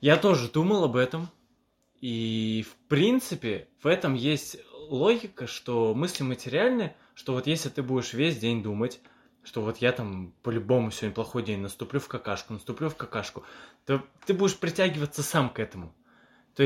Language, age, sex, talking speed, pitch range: Russian, 20-39, male, 160 wpm, 110-150 Hz